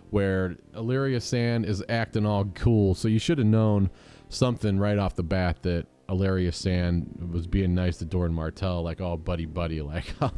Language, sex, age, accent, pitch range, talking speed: English, male, 30-49, American, 90-120 Hz, 190 wpm